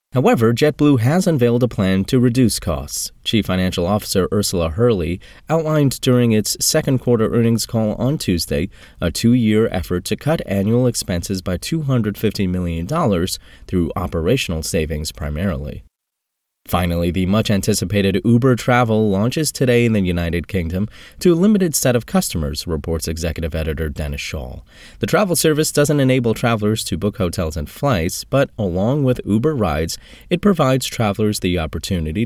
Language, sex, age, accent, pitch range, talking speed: English, male, 30-49, American, 90-125 Hz, 150 wpm